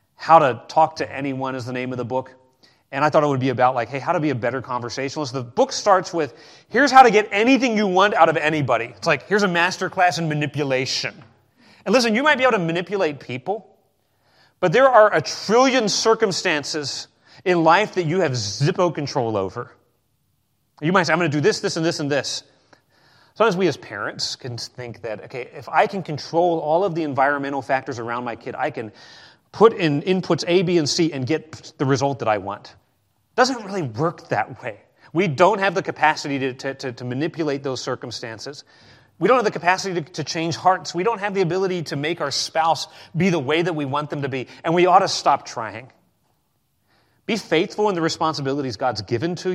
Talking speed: 215 wpm